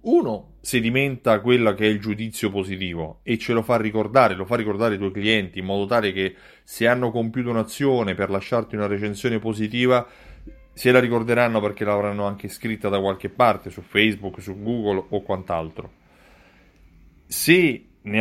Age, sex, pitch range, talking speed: 30-49, male, 105-140 Hz, 165 wpm